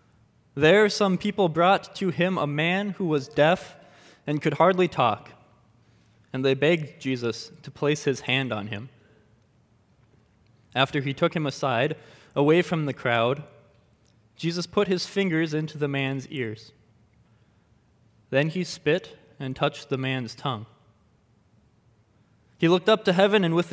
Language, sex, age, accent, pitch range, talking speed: English, male, 20-39, American, 115-160 Hz, 145 wpm